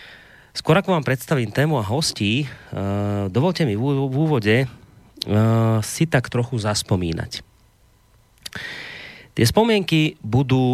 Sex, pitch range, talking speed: male, 105-140 Hz, 100 wpm